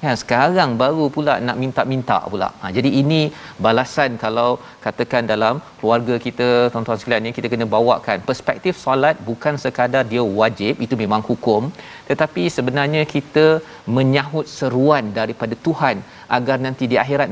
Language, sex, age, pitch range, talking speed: Malayalam, male, 40-59, 115-145 Hz, 145 wpm